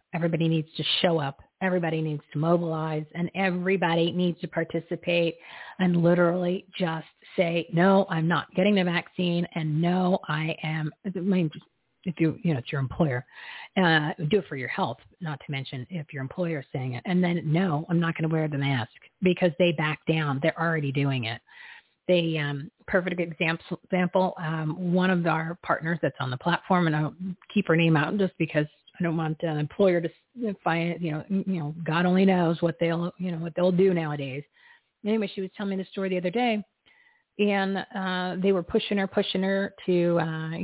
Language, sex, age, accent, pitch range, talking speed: English, female, 40-59, American, 160-185 Hz, 195 wpm